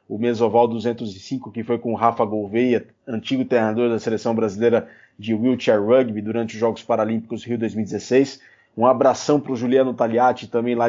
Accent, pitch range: Brazilian, 115-135 Hz